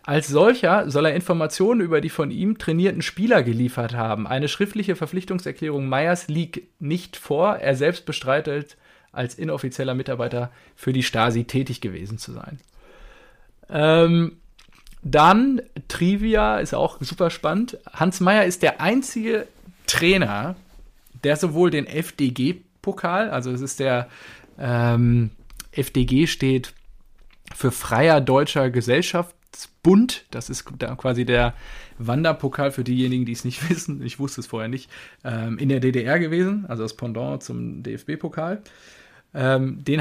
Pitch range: 125-175 Hz